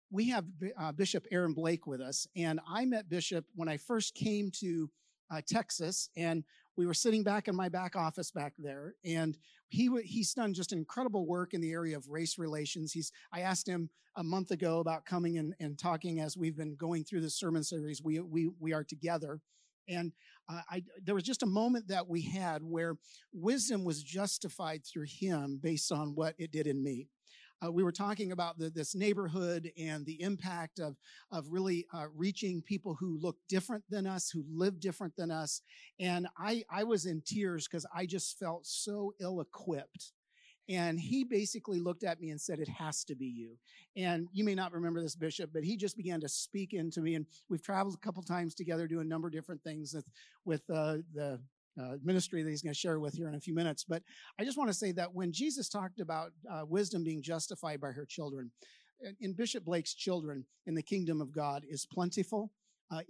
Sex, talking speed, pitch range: male, 210 wpm, 160-190 Hz